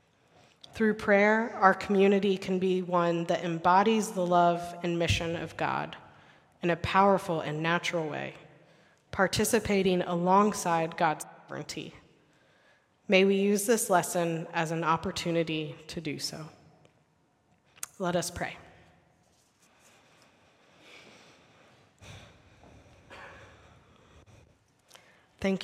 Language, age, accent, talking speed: English, 30-49, American, 95 wpm